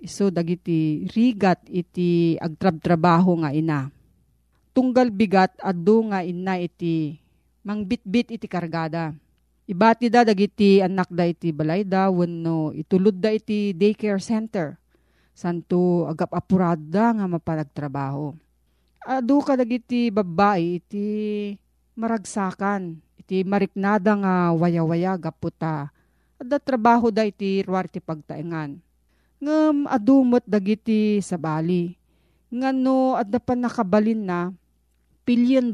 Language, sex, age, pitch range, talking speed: Filipino, female, 40-59, 165-215 Hz, 105 wpm